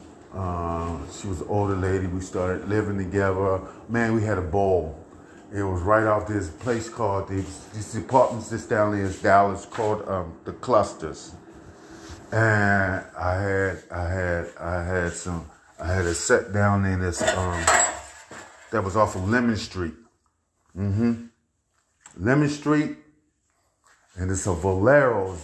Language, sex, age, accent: English, male, 30-49, American